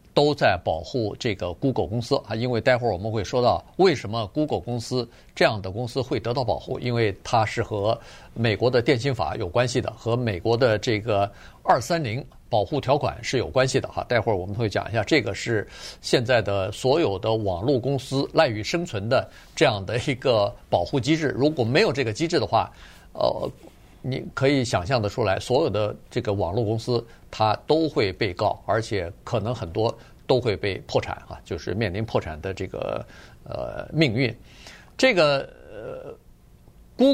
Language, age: Chinese, 50-69